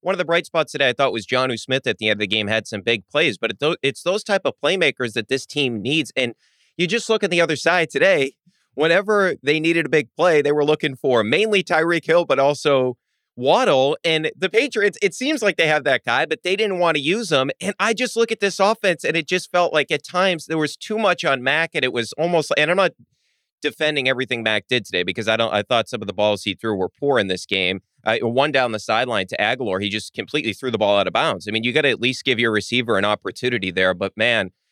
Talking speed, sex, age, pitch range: 265 wpm, male, 30-49, 110-160 Hz